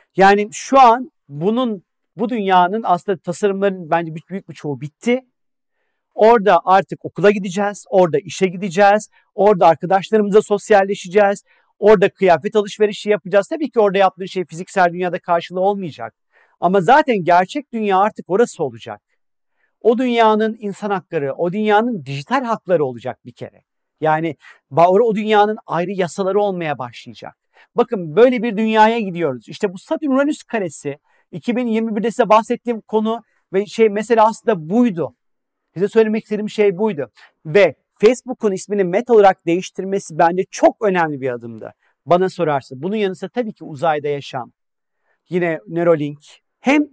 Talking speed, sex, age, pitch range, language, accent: 140 wpm, male, 40-59, 160-215 Hz, Turkish, native